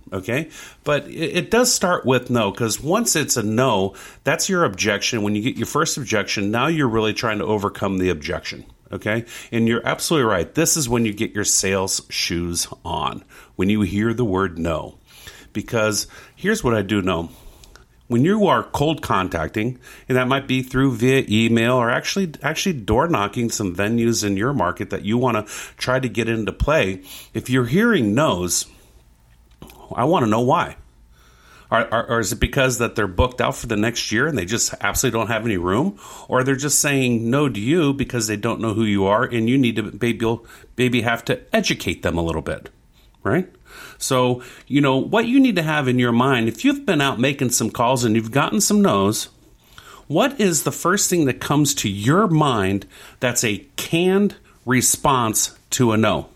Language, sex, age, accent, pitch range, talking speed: English, male, 40-59, American, 100-135 Hz, 195 wpm